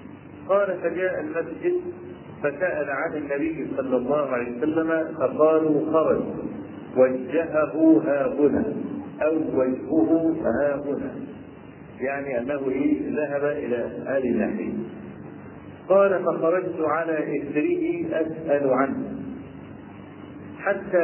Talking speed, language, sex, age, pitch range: 90 wpm, Arabic, male, 50-69, 140-170 Hz